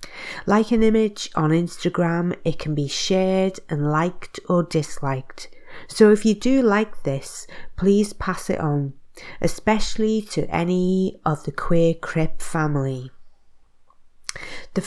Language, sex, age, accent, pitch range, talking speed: English, female, 40-59, British, 150-185 Hz, 130 wpm